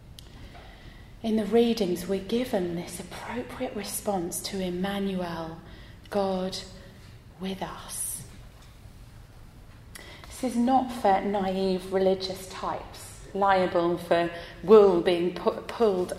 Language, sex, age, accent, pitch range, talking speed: English, female, 30-49, British, 170-200 Hz, 95 wpm